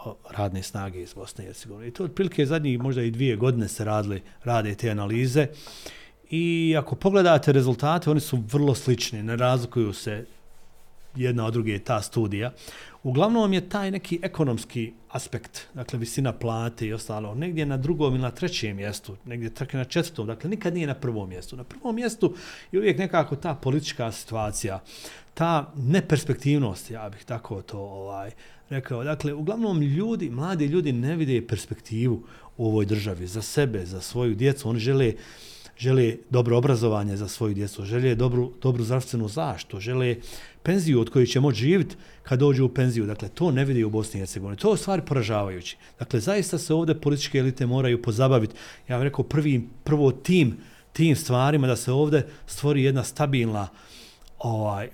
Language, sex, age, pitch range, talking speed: Croatian, male, 40-59, 115-150 Hz, 165 wpm